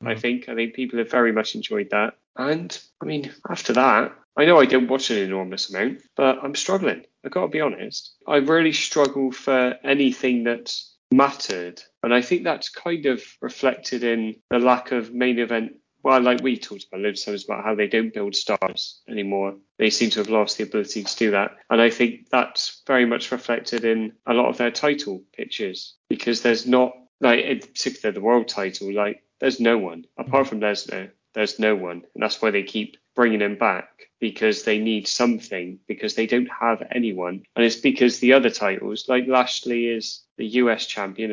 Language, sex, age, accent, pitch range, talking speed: English, male, 30-49, British, 110-130 Hz, 195 wpm